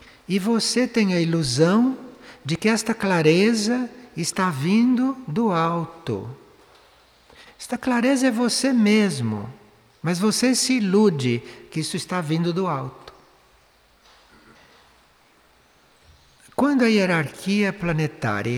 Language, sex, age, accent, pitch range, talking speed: Portuguese, male, 60-79, Brazilian, 135-220 Hz, 105 wpm